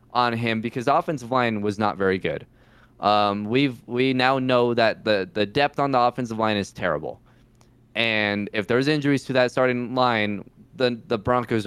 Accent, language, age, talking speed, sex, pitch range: American, English, 20-39, 185 wpm, male, 120-160 Hz